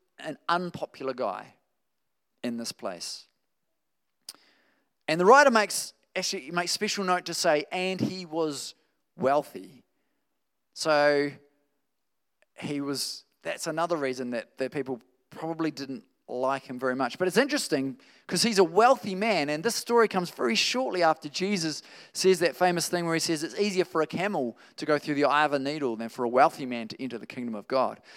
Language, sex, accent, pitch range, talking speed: English, male, Australian, 140-195 Hz, 175 wpm